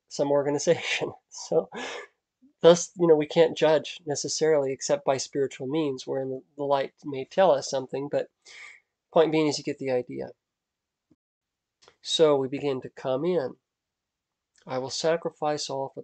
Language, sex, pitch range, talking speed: English, male, 130-160 Hz, 150 wpm